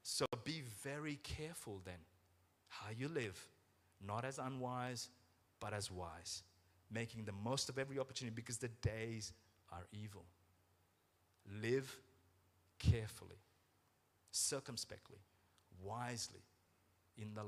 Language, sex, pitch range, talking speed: English, male, 95-130 Hz, 105 wpm